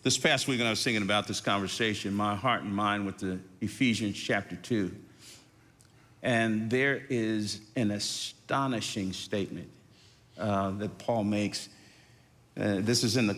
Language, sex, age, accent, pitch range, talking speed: English, male, 50-69, American, 105-135 Hz, 150 wpm